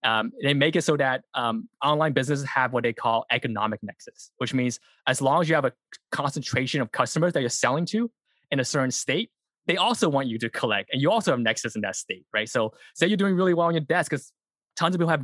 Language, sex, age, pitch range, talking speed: English, male, 20-39, 115-150 Hz, 250 wpm